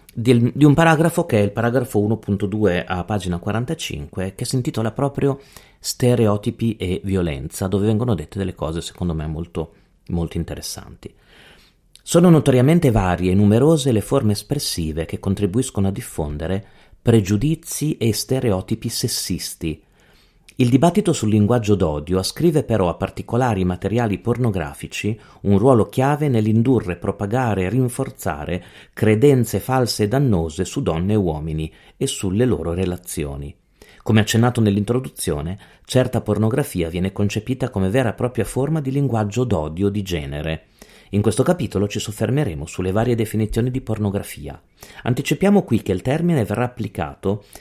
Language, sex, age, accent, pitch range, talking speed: Italian, male, 40-59, native, 95-130 Hz, 135 wpm